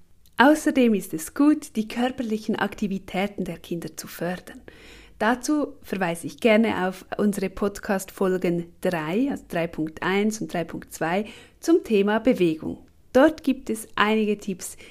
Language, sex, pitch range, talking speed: German, female, 185-250 Hz, 125 wpm